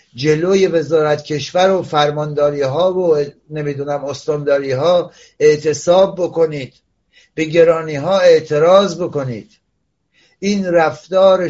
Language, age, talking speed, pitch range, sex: Persian, 60-79, 105 wpm, 145-180 Hz, male